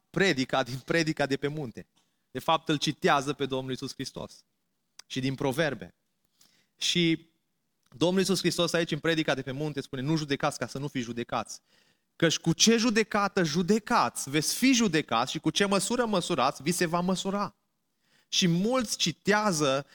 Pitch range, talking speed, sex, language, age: 145-200 Hz, 165 wpm, male, Romanian, 30-49